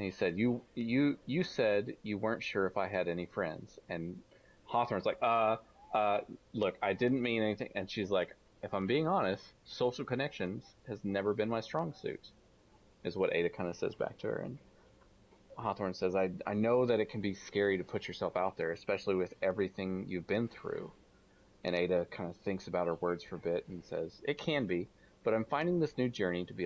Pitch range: 90-110 Hz